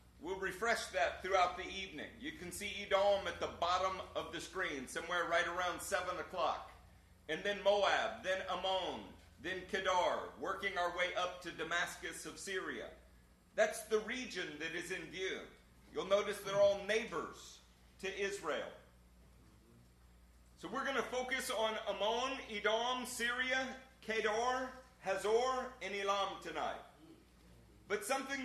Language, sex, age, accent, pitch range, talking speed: English, male, 40-59, American, 160-235 Hz, 140 wpm